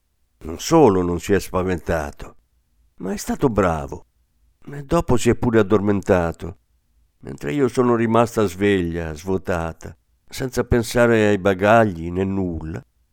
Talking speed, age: 130 wpm, 50-69